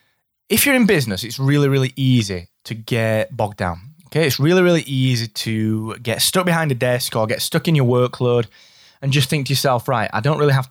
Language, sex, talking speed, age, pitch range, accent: English, male, 220 wpm, 20-39, 110-140 Hz, British